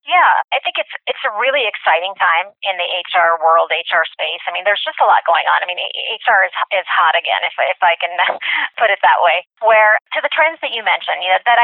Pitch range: 185-270 Hz